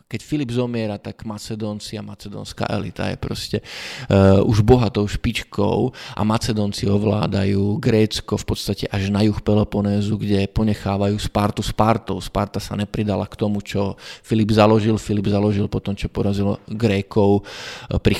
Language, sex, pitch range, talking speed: Czech, male, 100-110 Hz, 140 wpm